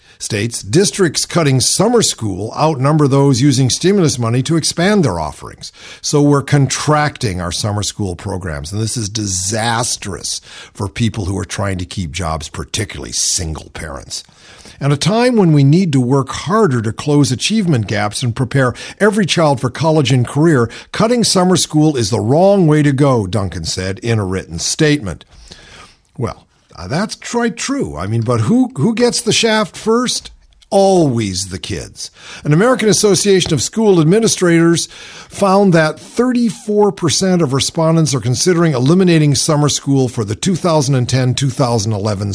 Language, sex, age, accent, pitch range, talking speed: English, male, 50-69, American, 105-165 Hz, 155 wpm